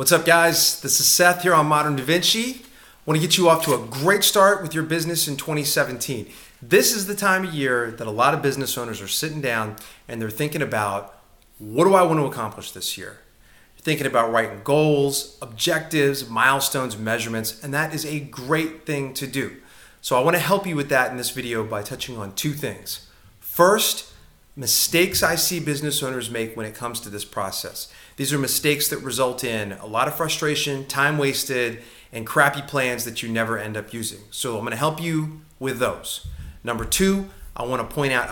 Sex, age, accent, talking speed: male, 30-49, American, 210 wpm